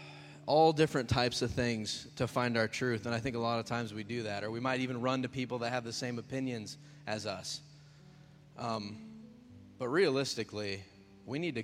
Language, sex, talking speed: English, male, 200 wpm